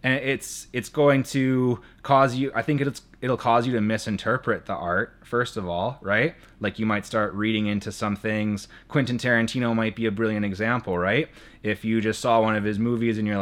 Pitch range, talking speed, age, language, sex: 95-120 Hz, 210 wpm, 20-39, English, male